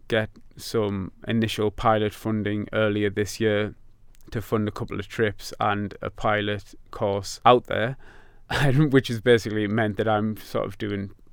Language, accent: English, British